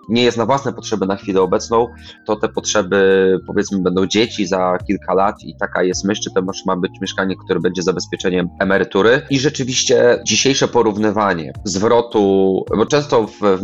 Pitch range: 95-115 Hz